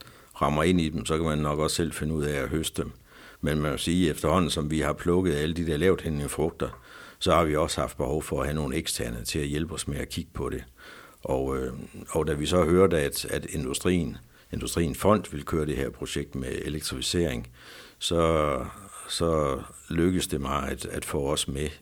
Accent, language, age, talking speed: native, Danish, 60-79, 225 wpm